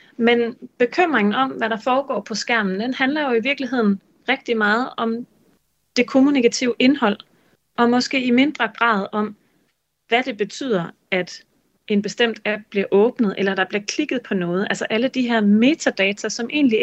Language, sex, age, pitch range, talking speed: Danish, female, 30-49, 195-245 Hz, 170 wpm